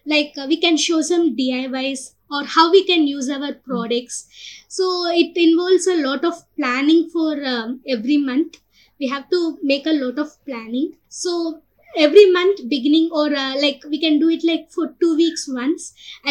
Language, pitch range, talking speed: English, 265-330 Hz, 175 wpm